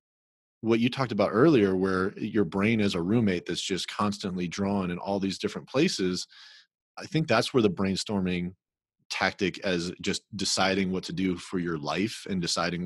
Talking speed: 175 wpm